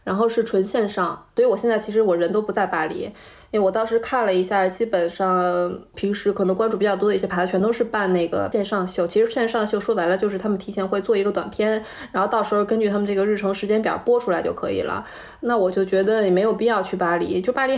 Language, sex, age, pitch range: Chinese, female, 20-39, 185-235 Hz